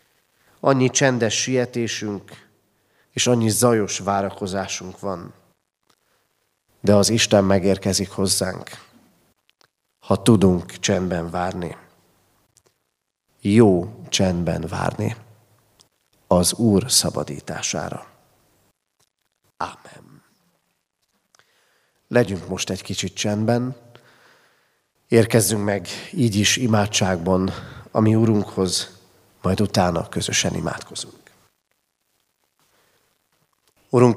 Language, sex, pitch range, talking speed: Hungarian, male, 100-115 Hz, 75 wpm